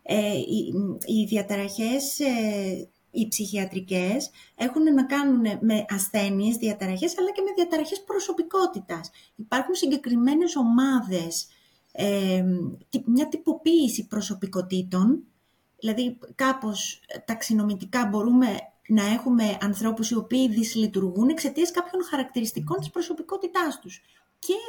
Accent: native